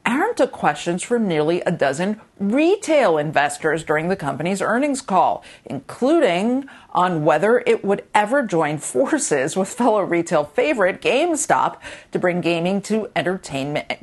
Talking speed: 135 wpm